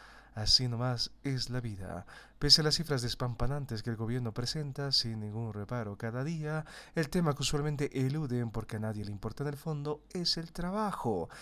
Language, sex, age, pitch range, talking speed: Spanish, male, 30-49, 125-170 Hz, 185 wpm